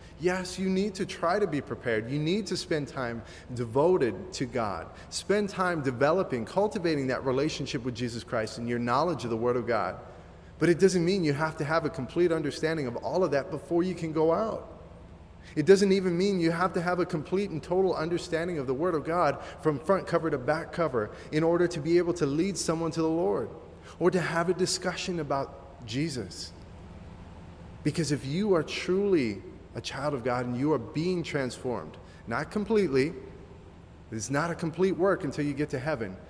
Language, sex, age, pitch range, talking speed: English, male, 30-49, 115-165 Hz, 200 wpm